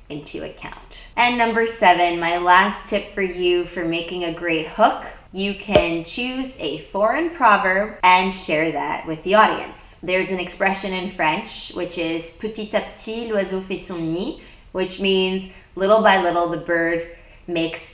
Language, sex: English, female